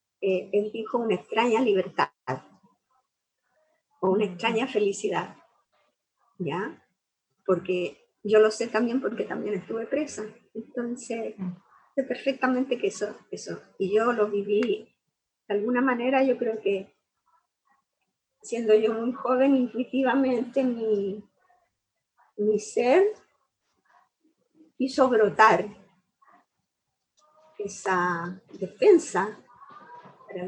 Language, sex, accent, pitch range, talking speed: Spanish, female, American, 205-275 Hz, 95 wpm